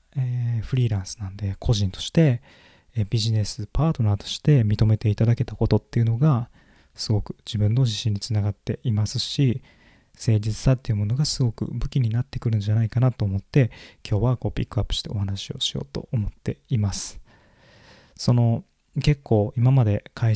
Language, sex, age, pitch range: Japanese, male, 20-39, 105-125 Hz